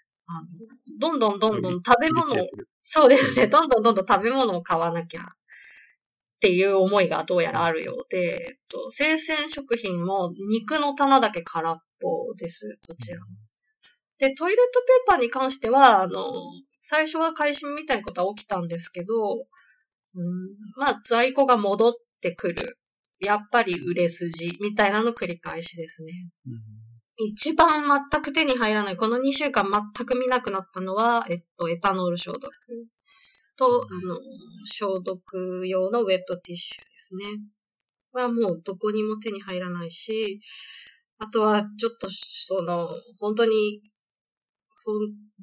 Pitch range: 180-255 Hz